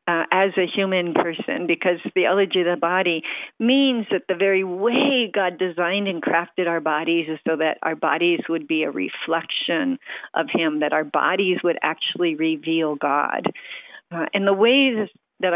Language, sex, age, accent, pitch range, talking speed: English, female, 50-69, American, 170-210 Hz, 170 wpm